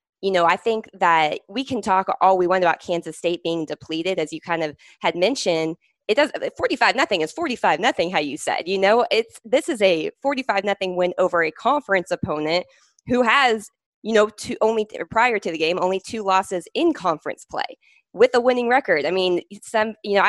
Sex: female